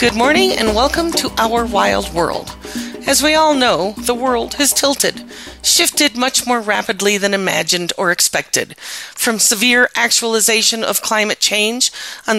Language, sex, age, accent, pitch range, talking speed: English, female, 40-59, American, 200-260 Hz, 150 wpm